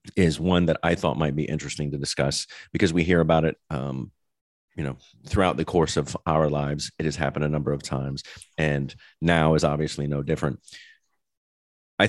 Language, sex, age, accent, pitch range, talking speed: English, male, 30-49, American, 75-85 Hz, 190 wpm